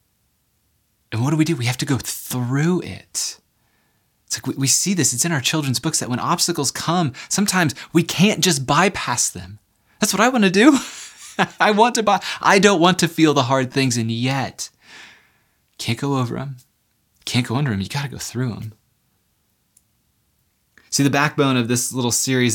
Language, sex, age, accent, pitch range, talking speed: English, male, 20-39, American, 105-145 Hz, 195 wpm